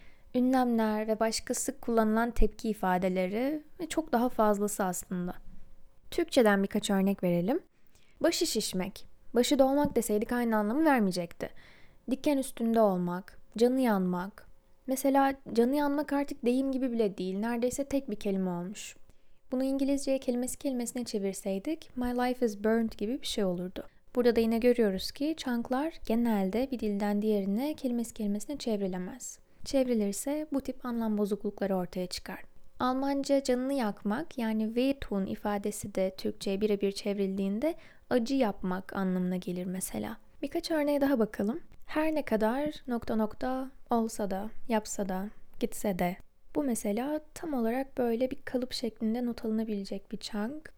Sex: female